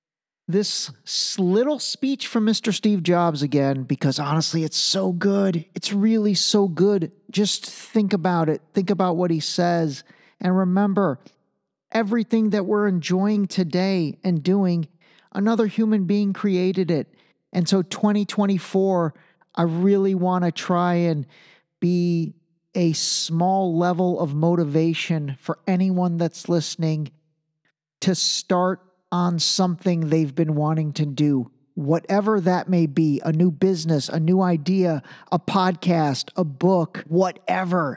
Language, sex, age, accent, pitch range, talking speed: English, male, 40-59, American, 155-190 Hz, 130 wpm